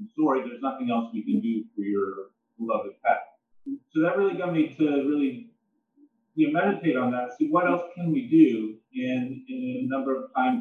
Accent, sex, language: American, male, English